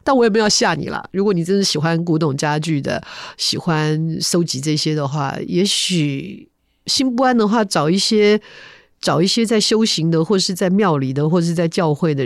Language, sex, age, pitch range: Chinese, female, 50-69, 150-185 Hz